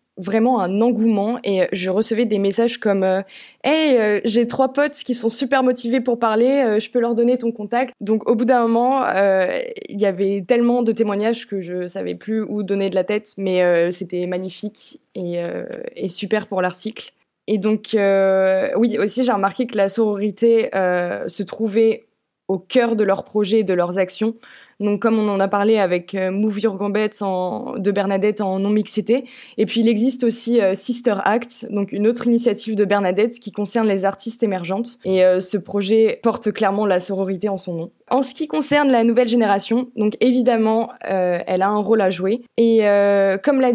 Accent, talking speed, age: French, 205 wpm, 20-39